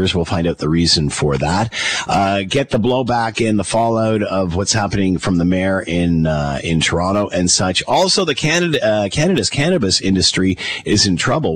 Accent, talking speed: American, 185 wpm